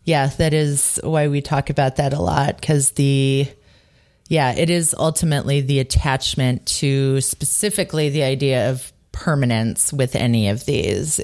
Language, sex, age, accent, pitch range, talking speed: English, female, 30-49, American, 135-180 Hz, 150 wpm